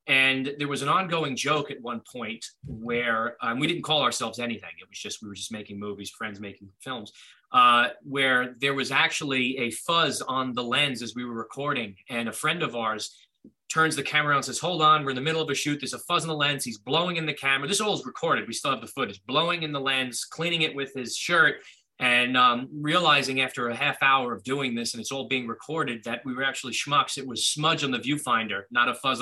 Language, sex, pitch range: English, male, 120-145 Hz